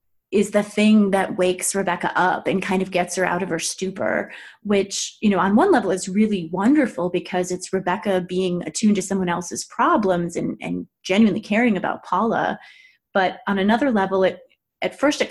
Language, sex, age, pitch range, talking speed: English, female, 30-49, 185-225 Hz, 190 wpm